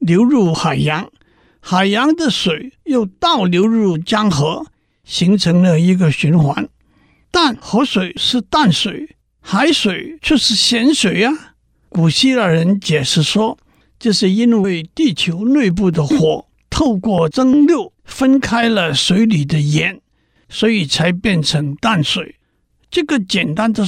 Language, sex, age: Chinese, male, 60-79